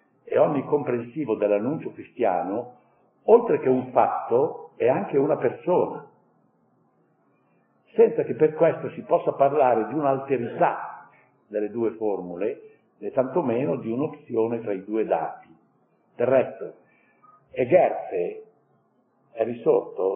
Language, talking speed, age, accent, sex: Italian, 115 wpm, 60-79, native, male